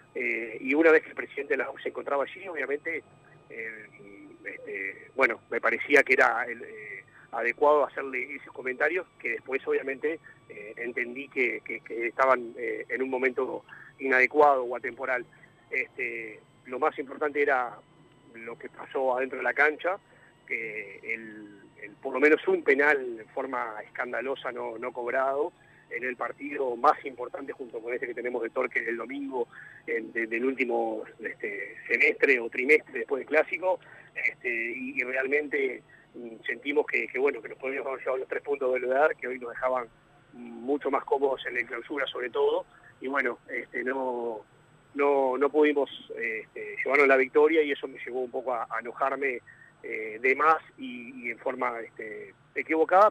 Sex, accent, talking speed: male, Argentinian, 160 wpm